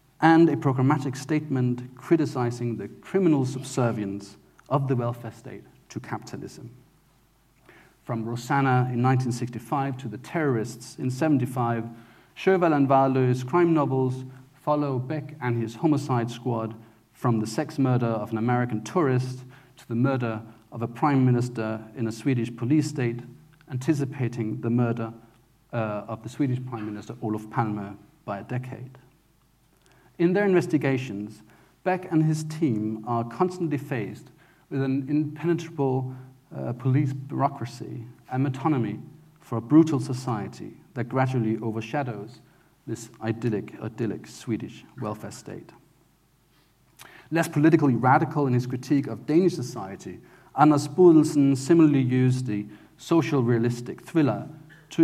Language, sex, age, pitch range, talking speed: English, male, 40-59, 115-150 Hz, 130 wpm